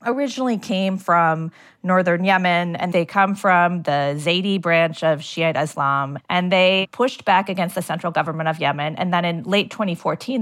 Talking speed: 175 wpm